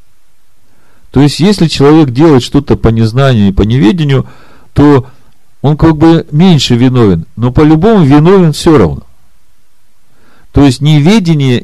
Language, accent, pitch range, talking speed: Russian, native, 105-145 Hz, 130 wpm